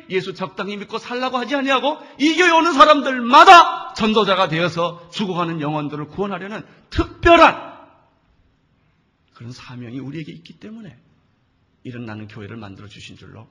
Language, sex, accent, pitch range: Korean, male, native, 120-170 Hz